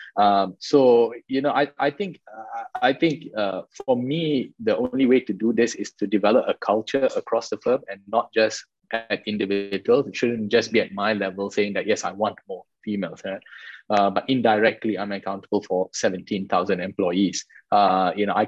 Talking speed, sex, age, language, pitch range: 190 wpm, male, 20-39, English, 100-115 Hz